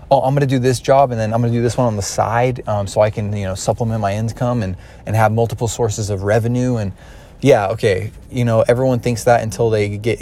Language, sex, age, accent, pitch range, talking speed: English, male, 20-39, American, 105-125 Hz, 245 wpm